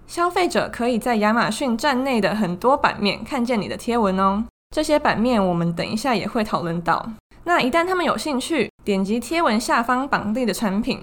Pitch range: 205-270 Hz